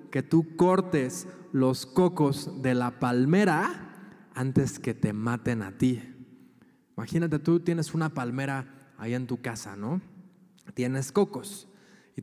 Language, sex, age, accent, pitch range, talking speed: Spanish, male, 20-39, Mexican, 140-185 Hz, 130 wpm